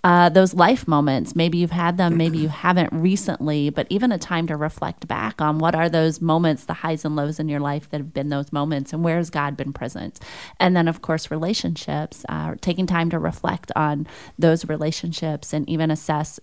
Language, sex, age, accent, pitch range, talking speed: English, female, 30-49, American, 150-170 Hz, 210 wpm